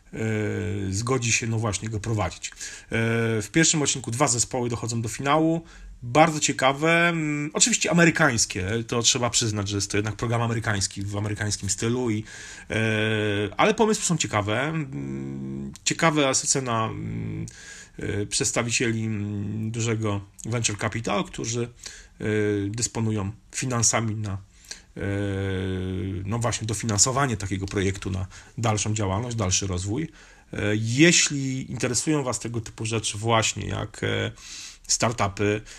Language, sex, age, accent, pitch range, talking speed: Polish, male, 40-59, native, 100-125 Hz, 105 wpm